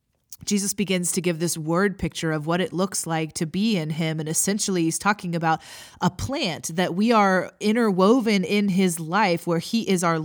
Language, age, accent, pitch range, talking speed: English, 20-39, American, 165-215 Hz, 200 wpm